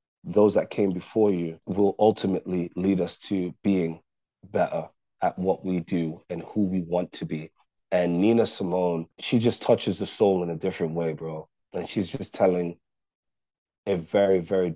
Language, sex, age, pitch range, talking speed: English, male, 30-49, 90-105 Hz, 170 wpm